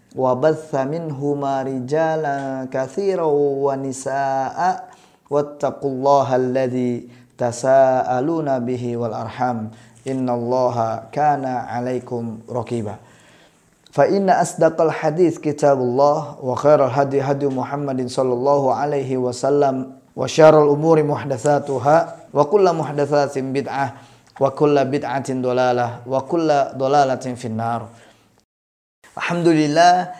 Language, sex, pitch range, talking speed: Indonesian, male, 125-145 Hz, 80 wpm